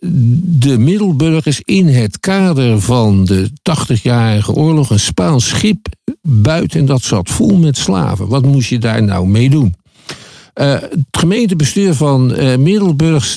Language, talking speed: Dutch, 135 wpm